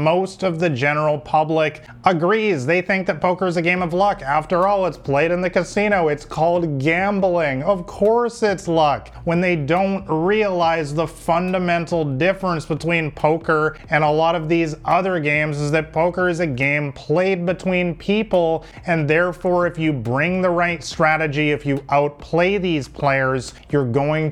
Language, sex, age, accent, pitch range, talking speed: English, male, 30-49, American, 145-180 Hz, 170 wpm